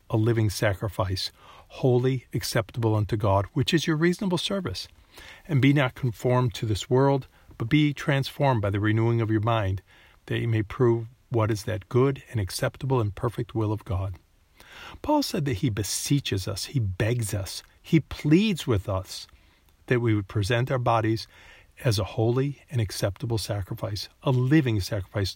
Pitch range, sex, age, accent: 100-125 Hz, male, 50-69, American